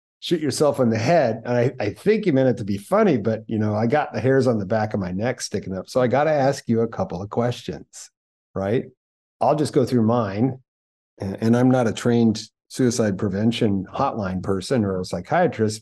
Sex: male